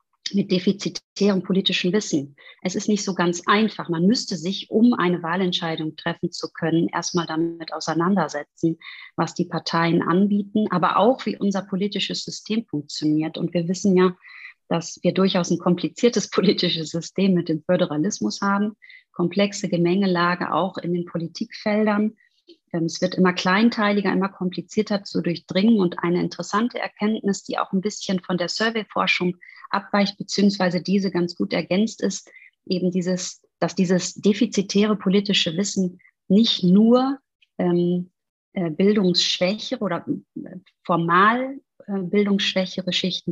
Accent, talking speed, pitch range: German, 135 wpm, 175-205 Hz